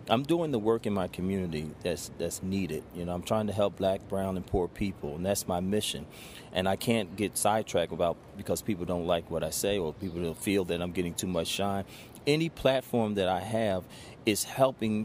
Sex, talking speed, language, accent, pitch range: male, 220 wpm, English, American, 95-120 Hz